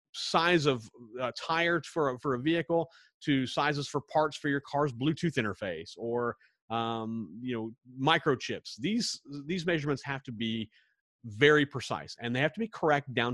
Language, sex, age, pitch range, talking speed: English, male, 30-49, 115-150 Hz, 160 wpm